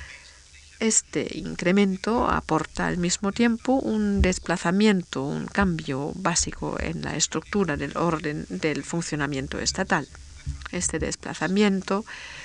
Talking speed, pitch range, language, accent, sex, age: 100 wpm, 150-190 Hz, Spanish, Spanish, female, 50-69